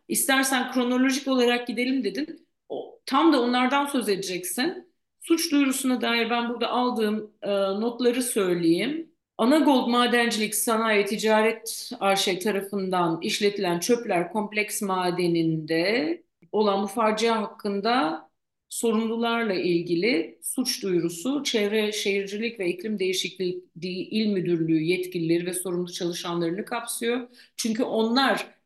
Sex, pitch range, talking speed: female, 185-245 Hz, 110 wpm